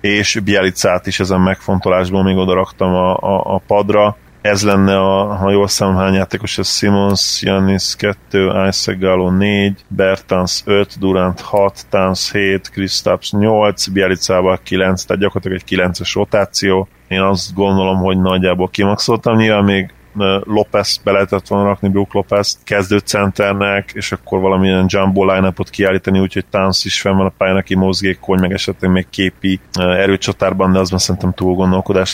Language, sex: Hungarian, male